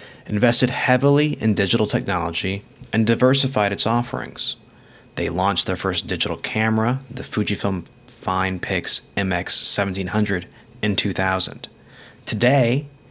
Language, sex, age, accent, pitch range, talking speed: English, male, 30-49, American, 105-130 Hz, 100 wpm